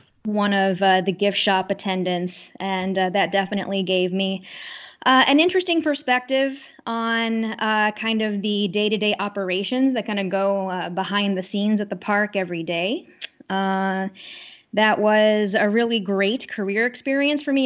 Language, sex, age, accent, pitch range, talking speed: English, female, 20-39, American, 190-230 Hz, 155 wpm